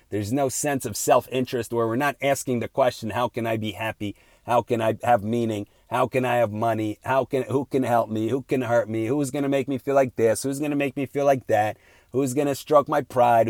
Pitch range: 115-135 Hz